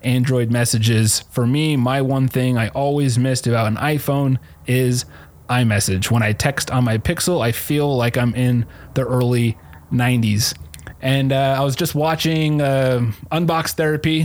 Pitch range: 120-140 Hz